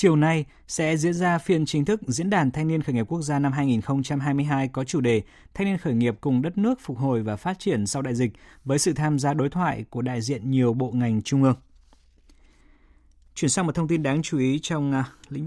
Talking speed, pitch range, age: 235 wpm, 125-155 Hz, 20-39